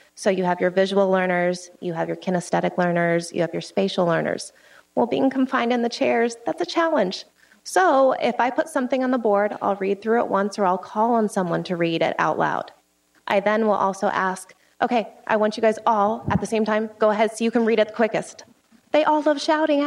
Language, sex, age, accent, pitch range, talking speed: English, female, 20-39, American, 190-240 Hz, 230 wpm